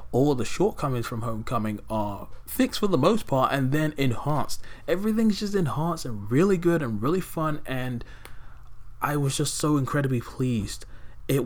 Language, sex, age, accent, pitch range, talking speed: English, male, 20-39, British, 110-140 Hz, 170 wpm